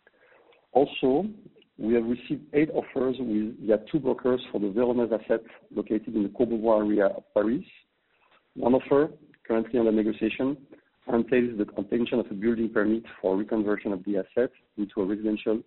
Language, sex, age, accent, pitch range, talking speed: English, male, 50-69, French, 105-120 Hz, 155 wpm